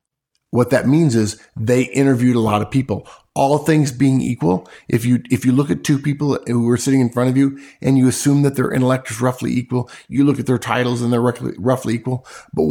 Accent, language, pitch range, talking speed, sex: American, English, 115-140 Hz, 225 wpm, male